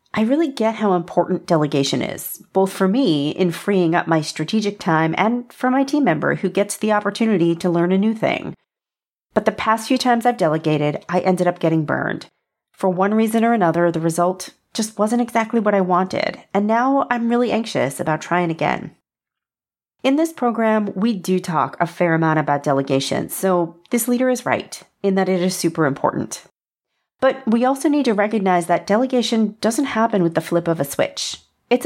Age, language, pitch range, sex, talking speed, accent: 40-59, English, 170-235 Hz, female, 190 wpm, American